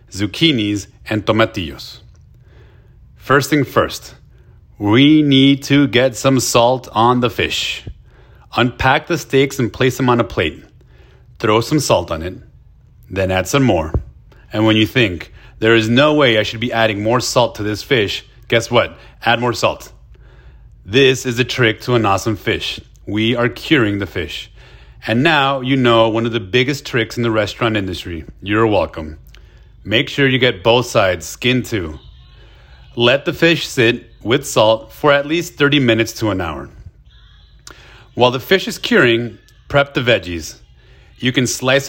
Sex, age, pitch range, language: male, 30-49, 110-130 Hz, English